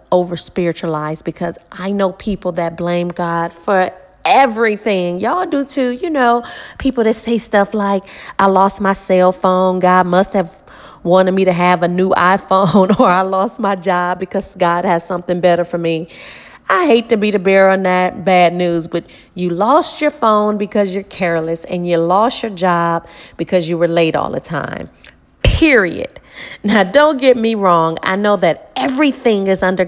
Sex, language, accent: female, English, American